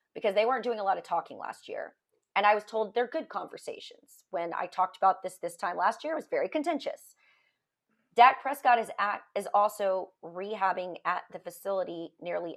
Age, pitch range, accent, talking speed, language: 30-49, 185-245 Hz, American, 195 wpm, English